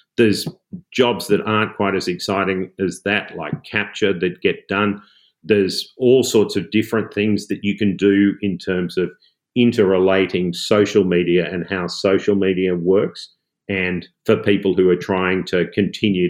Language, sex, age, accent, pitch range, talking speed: English, male, 40-59, Australian, 90-100 Hz, 160 wpm